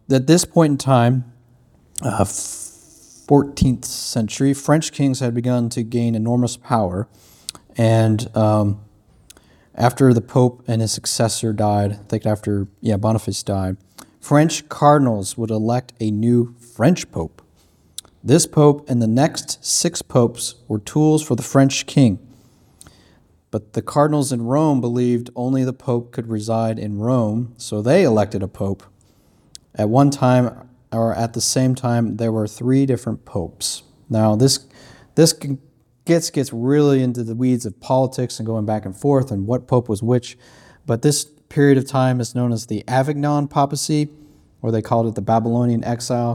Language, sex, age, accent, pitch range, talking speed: English, male, 40-59, American, 110-135 Hz, 160 wpm